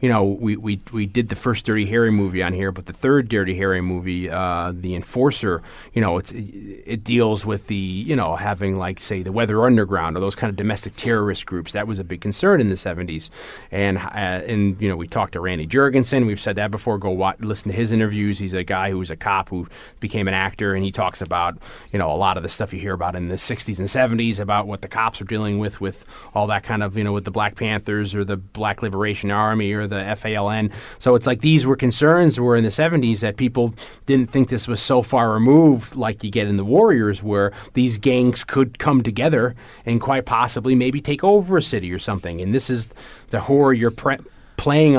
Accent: American